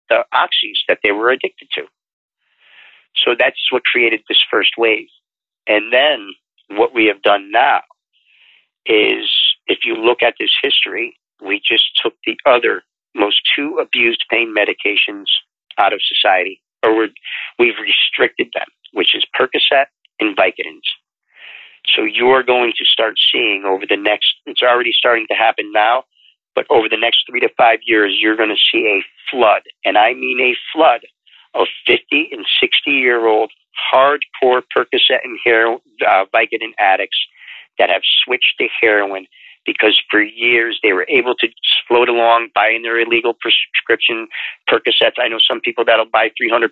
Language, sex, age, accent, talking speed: English, male, 50-69, American, 155 wpm